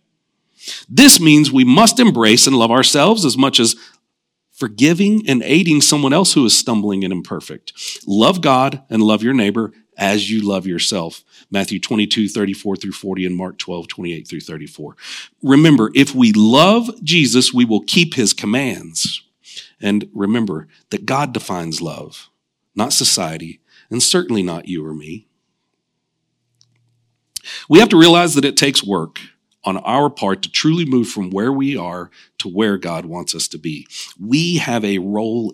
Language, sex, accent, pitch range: English, male, American, 100-150 Hz